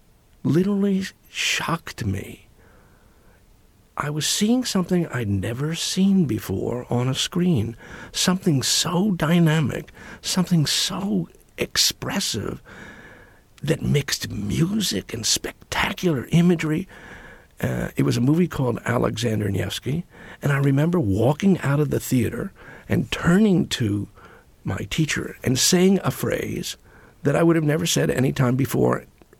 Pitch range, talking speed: 115-175 Hz, 120 wpm